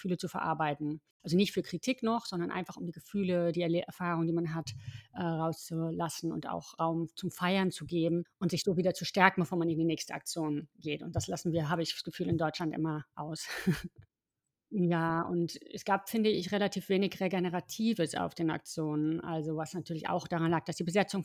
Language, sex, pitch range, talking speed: German, female, 165-180 Hz, 205 wpm